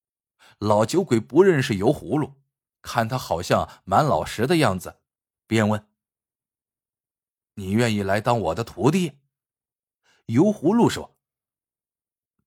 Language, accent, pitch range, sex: Chinese, native, 105-165 Hz, male